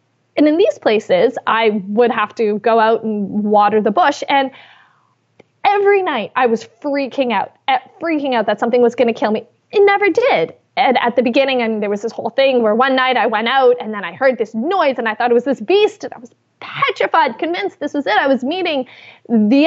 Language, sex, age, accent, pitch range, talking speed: English, female, 20-39, American, 225-295 Hz, 230 wpm